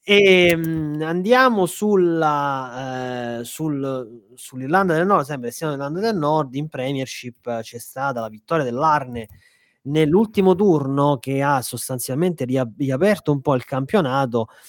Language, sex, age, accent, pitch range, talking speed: Italian, male, 30-49, native, 120-150 Hz, 130 wpm